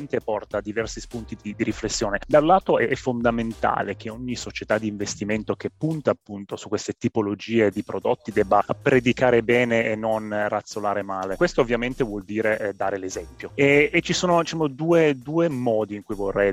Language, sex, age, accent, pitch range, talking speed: Italian, male, 30-49, native, 105-125 Hz, 175 wpm